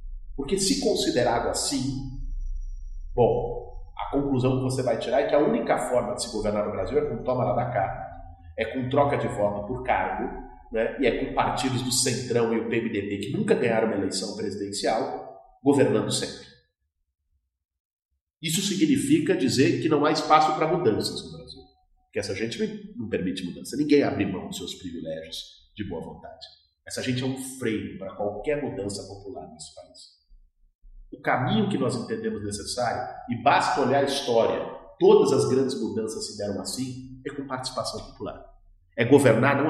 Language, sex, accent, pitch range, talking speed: English, male, Brazilian, 100-140 Hz, 170 wpm